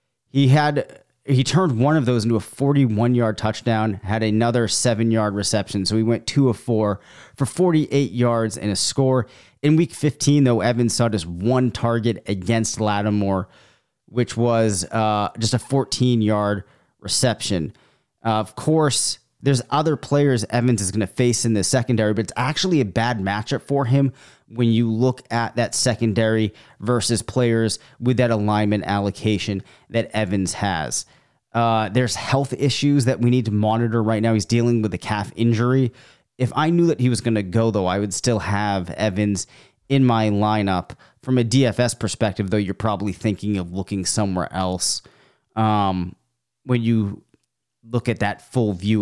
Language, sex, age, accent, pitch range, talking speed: English, male, 30-49, American, 105-125 Hz, 170 wpm